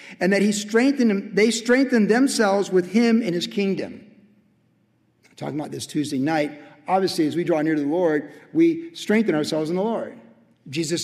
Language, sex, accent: English, male, American